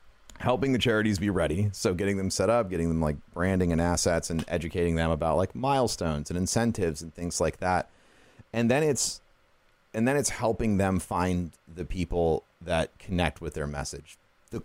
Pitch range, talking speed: 85-110 Hz, 185 wpm